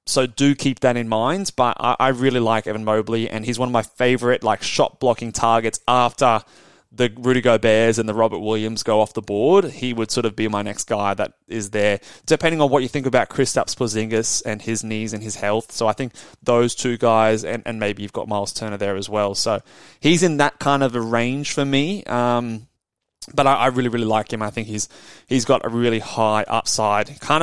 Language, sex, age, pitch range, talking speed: English, male, 20-39, 110-140 Hz, 225 wpm